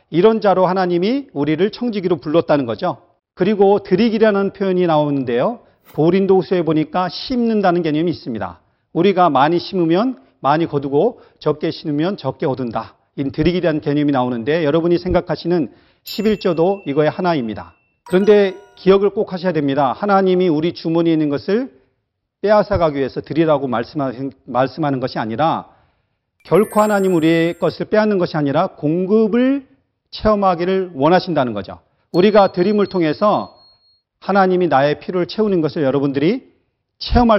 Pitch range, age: 145-190 Hz, 40-59